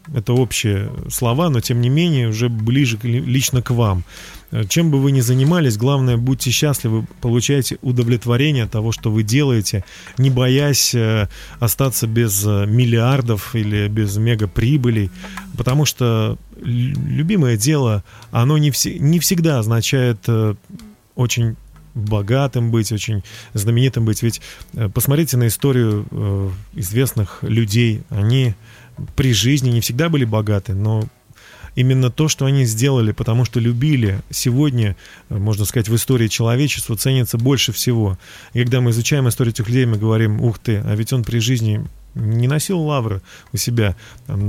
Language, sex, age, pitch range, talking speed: Russian, male, 20-39, 110-135 Hz, 135 wpm